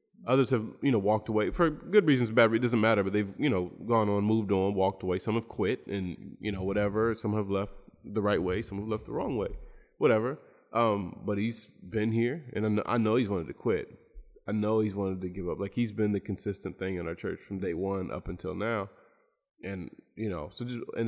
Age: 20-39